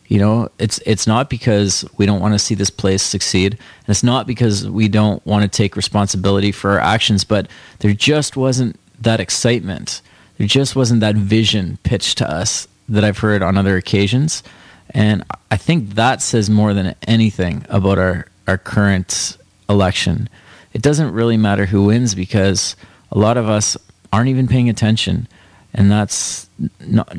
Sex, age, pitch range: male, 30-49, 100-115 Hz